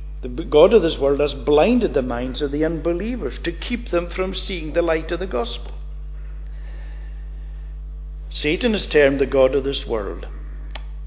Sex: male